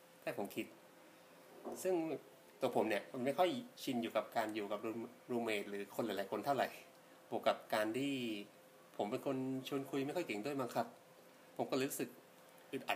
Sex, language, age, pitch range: male, Thai, 20-39, 110-140 Hz